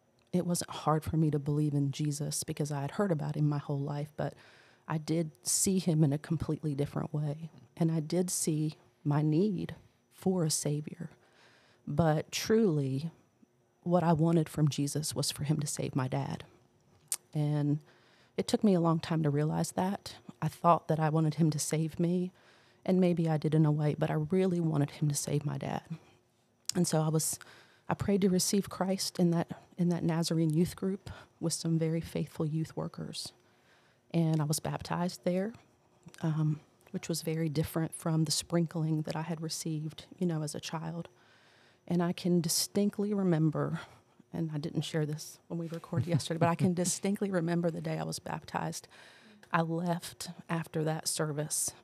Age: 40-59